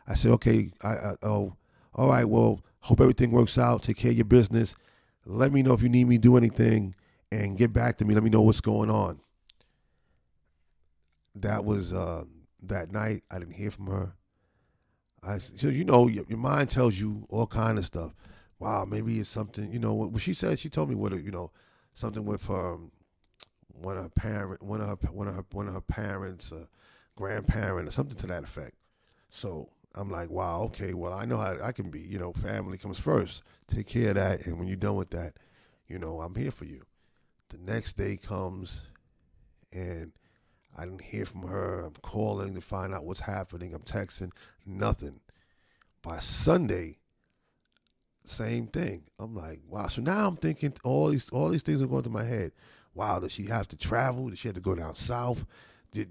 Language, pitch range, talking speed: English, 90-115 Hz, 205 wpm